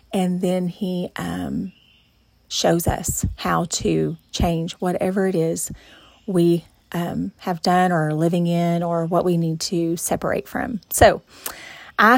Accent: American